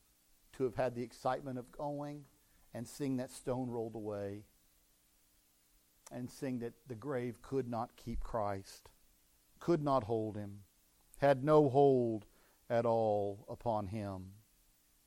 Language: English